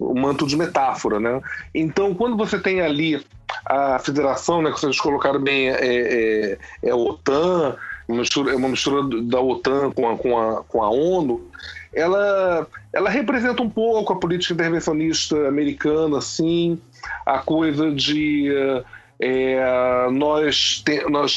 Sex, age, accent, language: male, 40-59, Brazilian, Portuguese